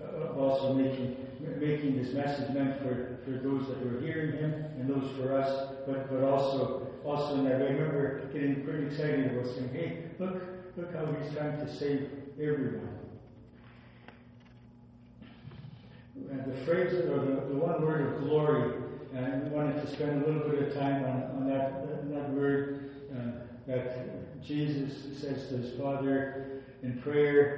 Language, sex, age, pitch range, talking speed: English, male, 60-79, 130-145 Hz, 160 wpm